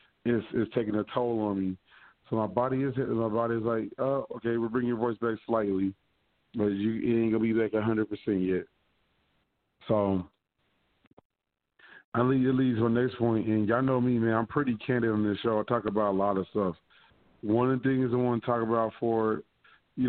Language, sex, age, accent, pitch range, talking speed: English, male, 30-49, American, 105-125 Hz, 220 wpm